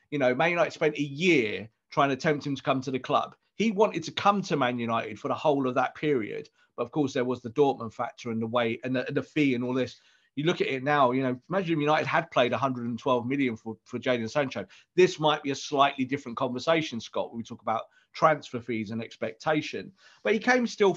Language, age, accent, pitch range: English, 40-59, British, 125-170 Hz